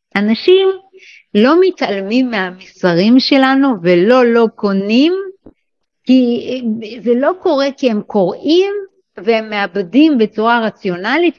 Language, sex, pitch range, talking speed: Hebrew, female, 200-290 Hz, 100 wpm